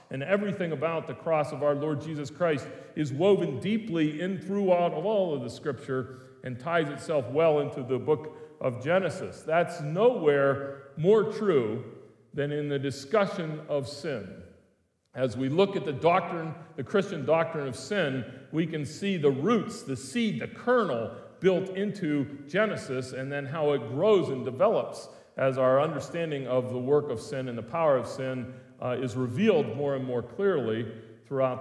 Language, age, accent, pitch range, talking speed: English, 40-59, American, 135-180 Hz, 170 wpm